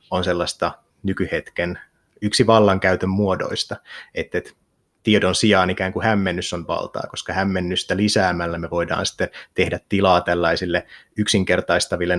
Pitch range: 90-105 Hz